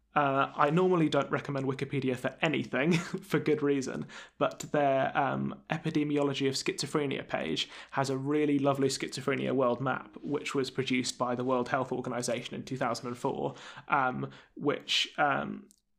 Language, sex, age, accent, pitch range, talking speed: English, male, 20-39, British, 130-150 Hz, 145 wpm